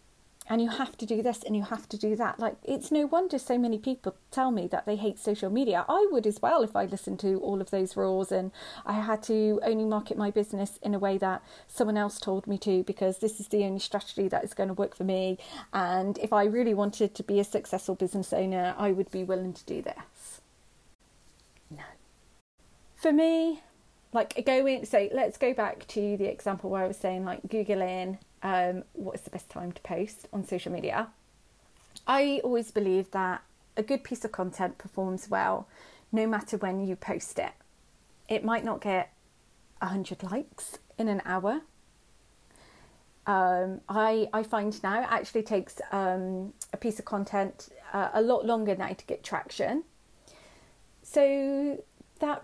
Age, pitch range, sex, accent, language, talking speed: 40-59, 190-230 Hz, female, British, English, 190 wpm